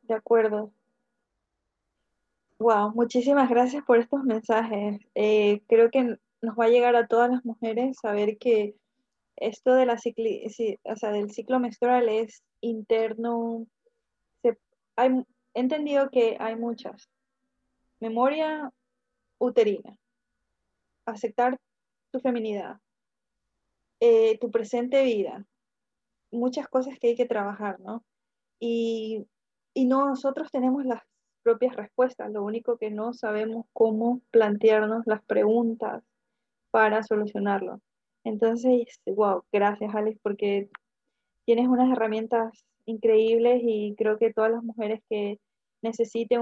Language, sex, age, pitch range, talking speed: English, female, 20-39, 215-245 Hz, 120 wpm